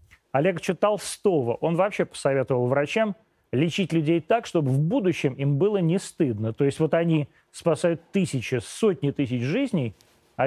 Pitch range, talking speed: 135-190 Hz, 155 wpm